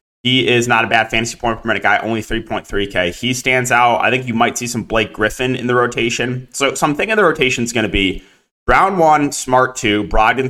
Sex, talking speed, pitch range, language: male, 235 wpm, 105-135 Hz, English